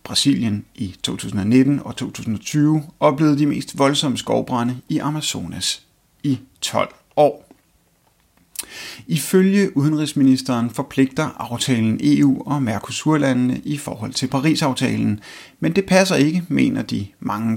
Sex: male